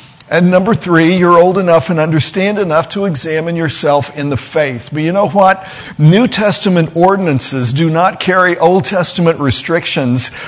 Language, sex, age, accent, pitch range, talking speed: English, male, 50-69, American, 155-210 Hz, 160 wpm